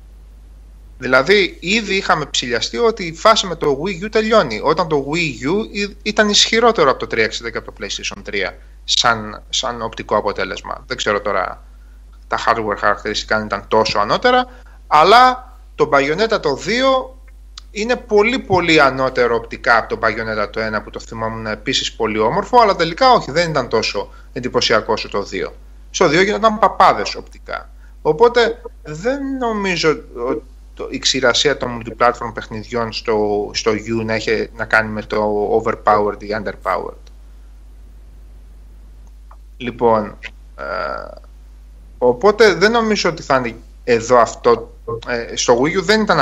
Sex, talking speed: male, 145 wpm